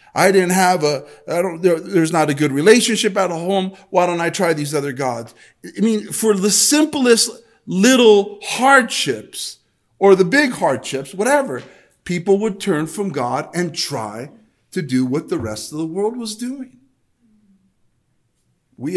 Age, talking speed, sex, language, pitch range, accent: 50-69, 165 wpm, male, English, 120-175 Hz, American